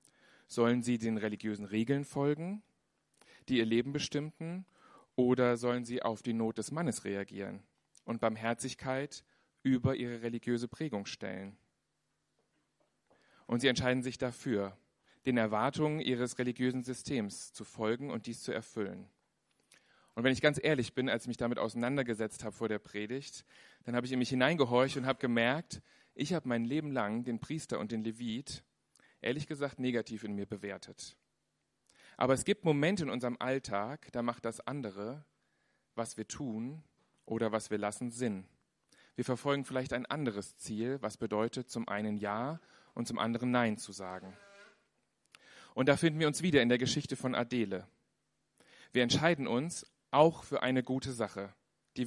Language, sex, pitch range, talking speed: German, male, 110-135 Hz, 160 wpm